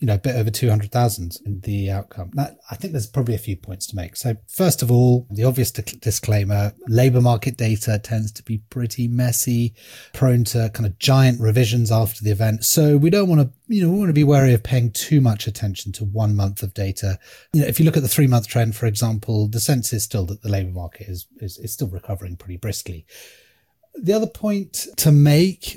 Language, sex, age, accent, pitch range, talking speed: English, male, 30-49, British, 105-130 Hz, 225 wpm